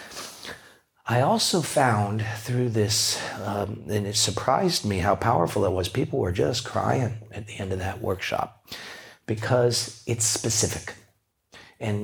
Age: 50-69